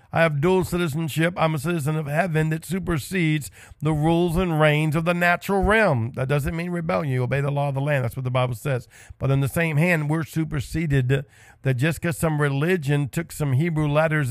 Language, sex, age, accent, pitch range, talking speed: English, male, 50-69, American, 115-155 Hz, 215 wpm